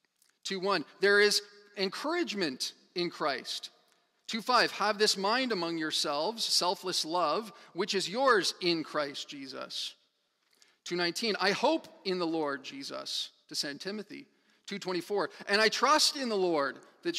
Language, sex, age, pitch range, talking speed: English, male, 40-59, 170-215 Hz, 135 wpm